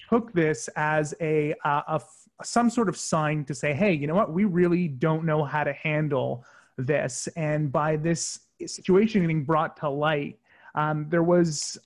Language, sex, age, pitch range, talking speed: English, male, 30-49, 150-180 Hz, 180 wpm